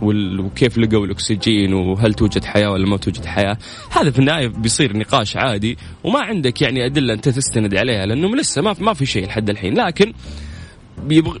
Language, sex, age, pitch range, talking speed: Arabic, male, 20-39, 115-155 Hz, 170 wpm